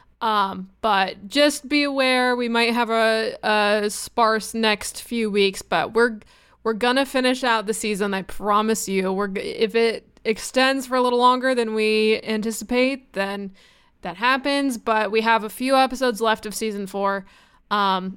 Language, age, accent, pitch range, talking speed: English, 20-39, American, 200-250 Hz, 165 wpm